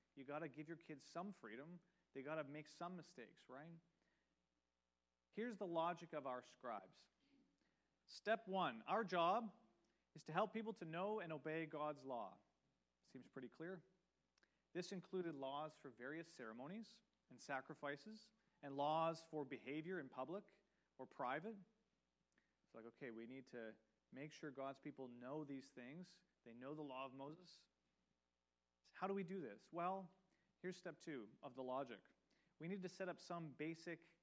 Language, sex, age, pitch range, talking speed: English, male, 40-59, 130-180 Hz, 160 wpm